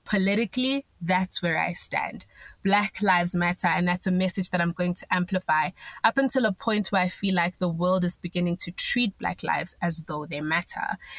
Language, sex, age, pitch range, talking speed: English, female, 20-39, 170-190 Hz, 200 wpm